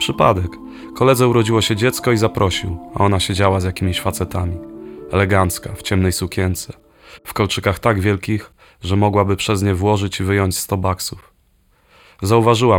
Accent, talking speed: native, 145 wpm